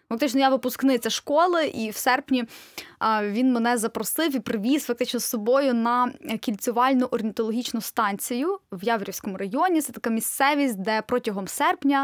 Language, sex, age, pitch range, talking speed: Ukrainian, female, 10-29, 220-265 Hz, 140 wpm